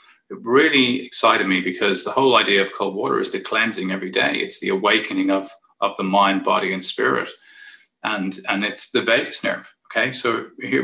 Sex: male